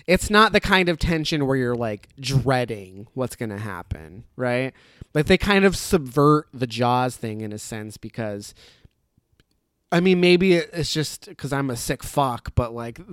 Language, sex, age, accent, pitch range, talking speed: English, male, 20-39, American, 115-160 Hz, 180 wpm